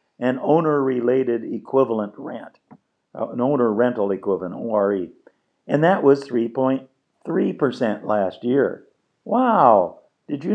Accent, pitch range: American, 120-180 Hz